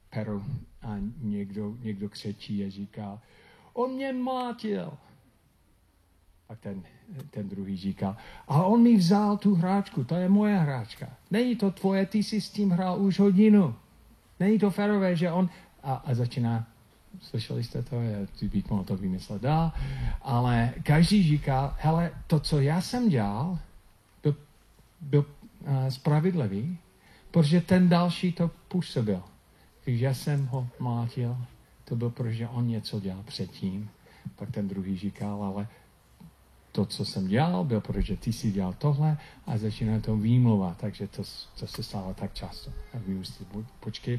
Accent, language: native, Czech